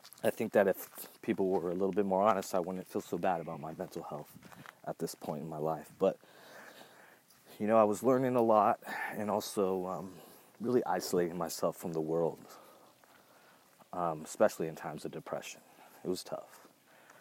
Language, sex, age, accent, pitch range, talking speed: English, male, 30-49, American, 90-115 Hz, 180 wpm